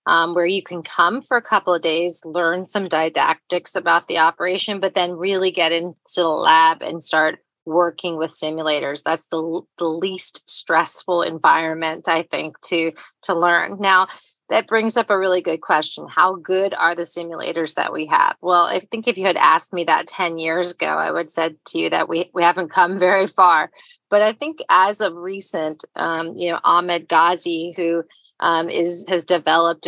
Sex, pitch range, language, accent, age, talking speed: female, 160-185 Hz, English, American, 30-49, 195 wpm